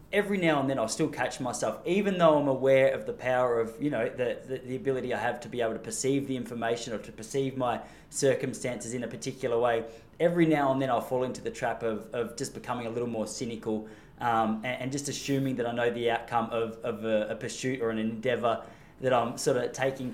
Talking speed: 240 wpm